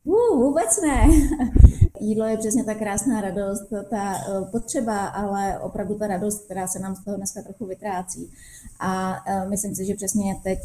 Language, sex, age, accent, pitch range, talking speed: Czech, female, 20-39, native, 180-210 Hz, 165 wpm